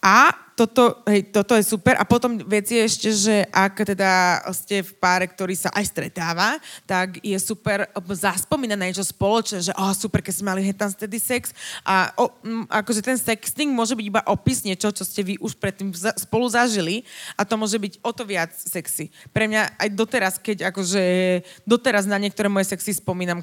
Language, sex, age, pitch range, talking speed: Slovak, female, 20-39, 180-215 Hz, 190 wpm